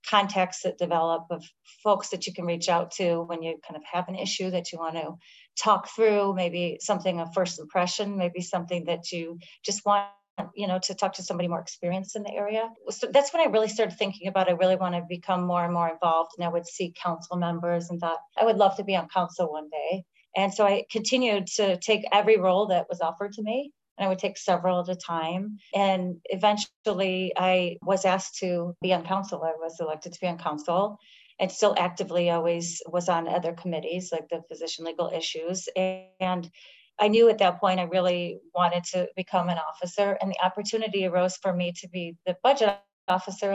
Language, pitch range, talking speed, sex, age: English, 175-200 Hz, 210 wpm, female, 30-49